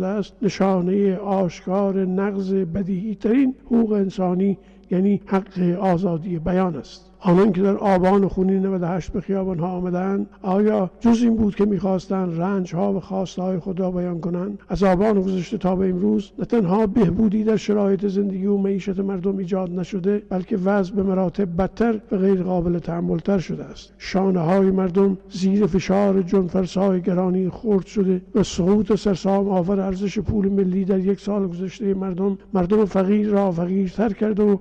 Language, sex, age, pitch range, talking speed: Persian, male, 60-79, 185-205 Hz, 160 wpm